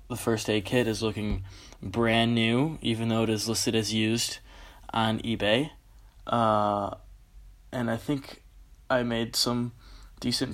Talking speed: 140 wpm